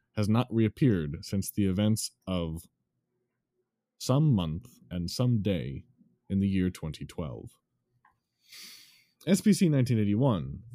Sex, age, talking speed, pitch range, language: male, 30-49, 100 wpm, 90-125 Hz, English